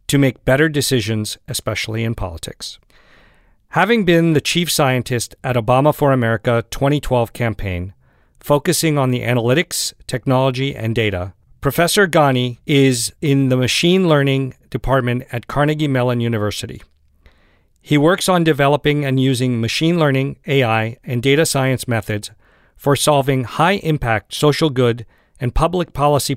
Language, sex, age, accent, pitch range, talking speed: English, male, 50-69, American, 115-150 Hz, 130 wpm